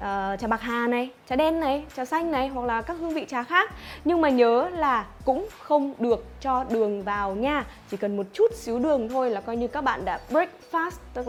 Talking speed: 240 wpm